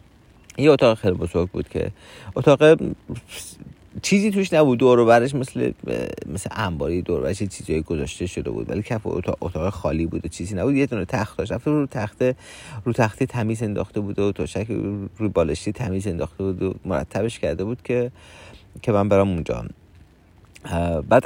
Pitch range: 90-115 Hz